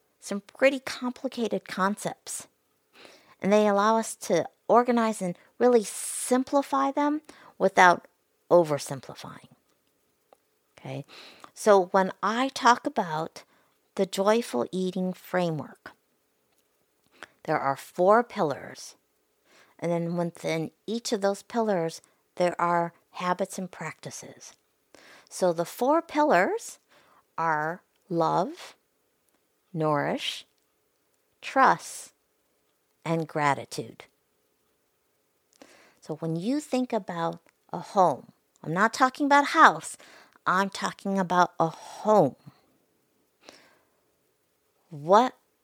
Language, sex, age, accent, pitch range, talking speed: English, female, 50-69, American, 160-225 Hz, 95 wpm